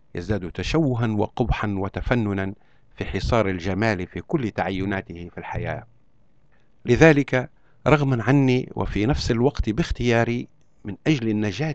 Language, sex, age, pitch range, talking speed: Arabic, male, 50-69, 100-130 Hz, 110 wpm